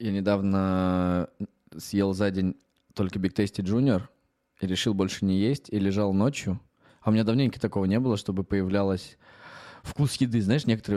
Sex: male